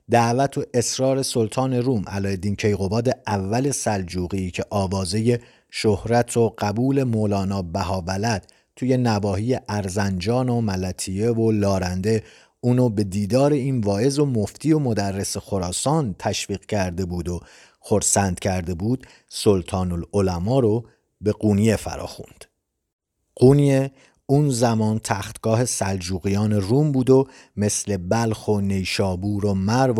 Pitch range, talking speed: 95-120 Hz, 120 wpm